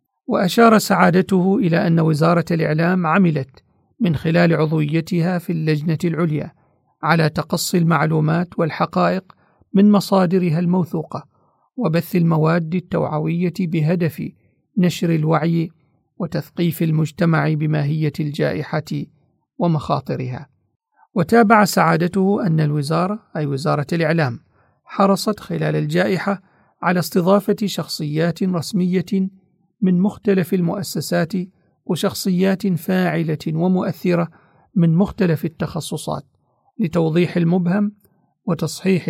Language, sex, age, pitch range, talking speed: Arabic, male, 40-59, 155-185 Hz, 85 wpm